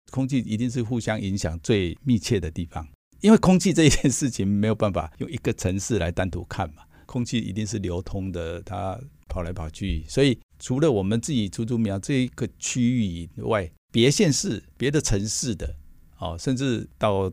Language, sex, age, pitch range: Chinese, male, 50-69, 90-120 Hz